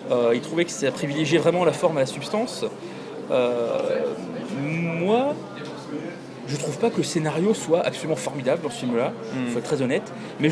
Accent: French